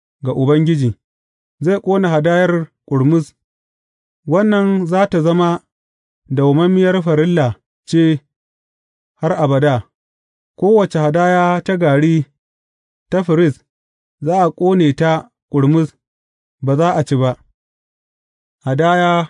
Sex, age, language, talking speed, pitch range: male, 30-49, English, 75 wpm, 135-180 Hz